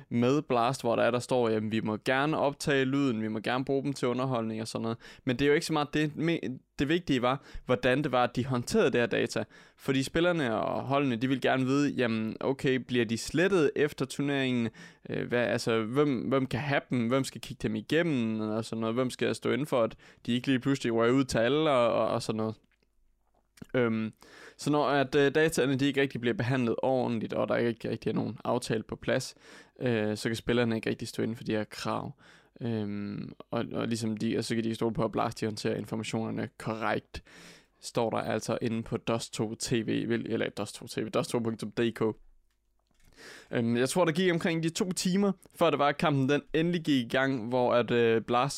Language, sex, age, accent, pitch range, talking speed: Danish, male, 20-39, native, 115-140 Hz, 210 wpm